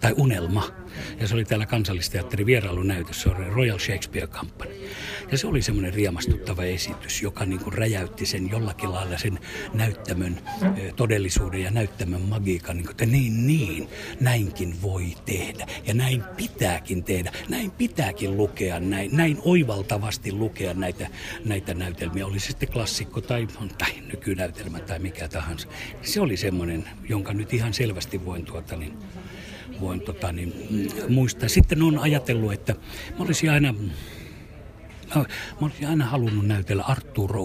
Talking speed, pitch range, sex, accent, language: 145 wpm, 90-115 Hz, male, native, Finnish